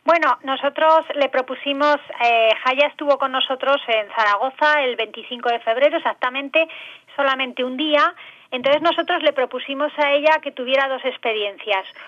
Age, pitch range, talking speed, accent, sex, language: 30-49, 230-290 Hz, 145 wpm, Spanish, female, English